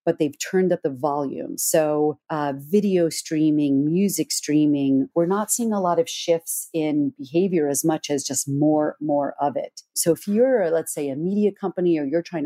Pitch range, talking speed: 145-180 Hz, 195 wpm